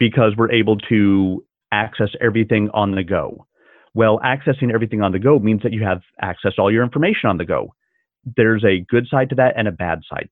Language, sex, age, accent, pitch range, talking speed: English, male, 30-49, American, 95-120 Hz, 210 wpm